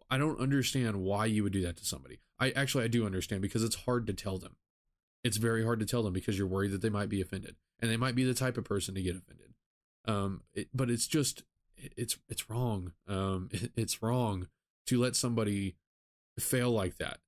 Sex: male